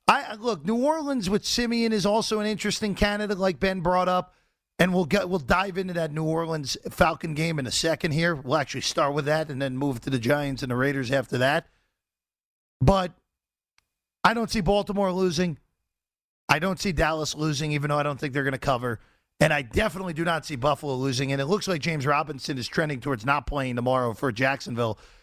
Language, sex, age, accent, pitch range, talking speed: English, male, 40-59, American, 130-185 Hz, 205 wpm